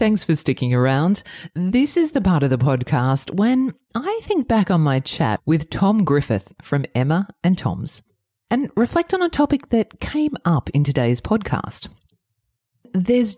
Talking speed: 165 wpm